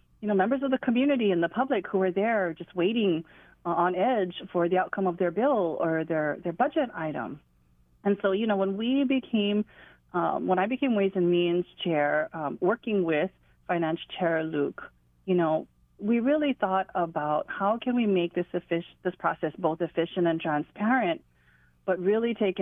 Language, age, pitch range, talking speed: English, 40-59, 170-210 Hz, 180 wpm